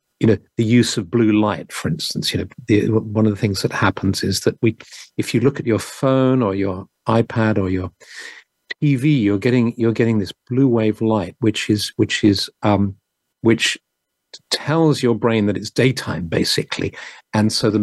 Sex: male